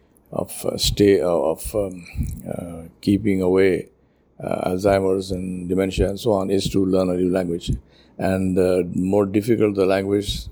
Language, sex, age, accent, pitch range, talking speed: English, male, 50-69, Indian, 90-100 Hz, 165 wpm